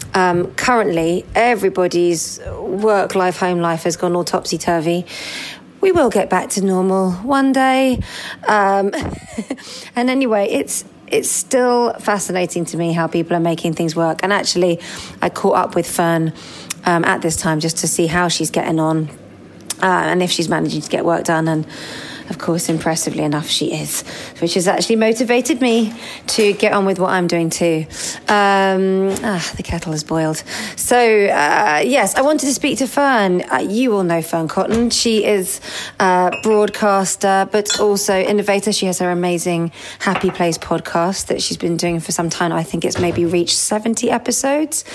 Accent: British